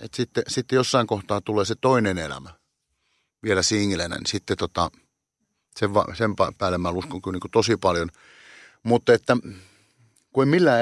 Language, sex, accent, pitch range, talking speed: Finnish, male, native, 90-115 Hz, 150 wpm